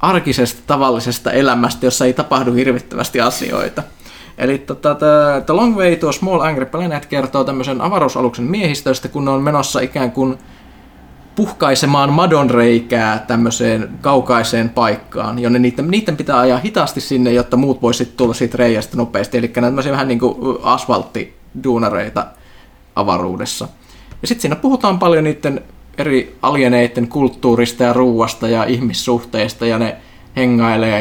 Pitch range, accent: 120-150 Hz, native